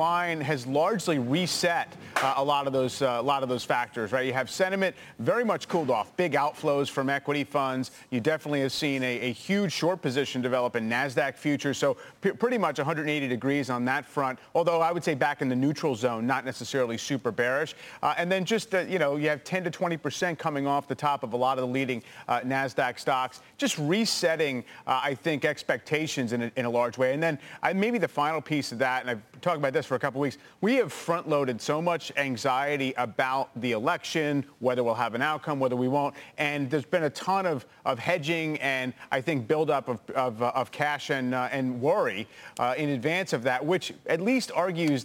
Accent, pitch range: American, 130-160 Hz